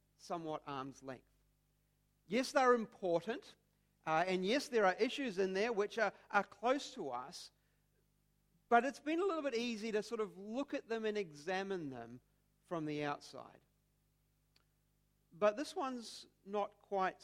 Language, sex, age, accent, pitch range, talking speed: English, male, 40-59, Australian, 150-220 Hz, 155 wpm